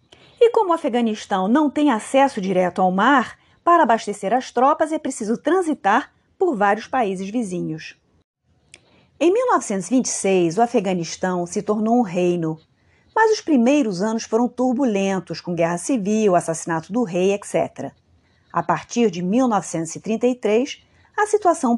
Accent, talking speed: Brazilian, 130 wpm